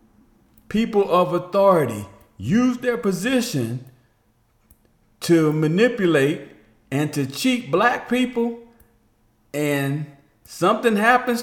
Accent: American